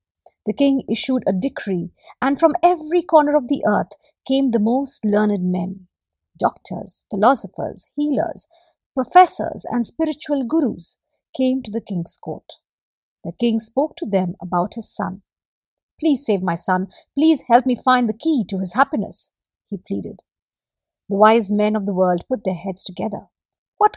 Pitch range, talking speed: 195-275 Hz, 160 wpm